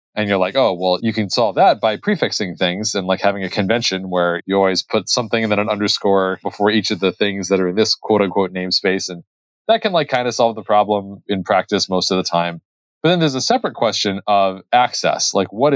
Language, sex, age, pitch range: English, male, 30-49, 95-120 Hz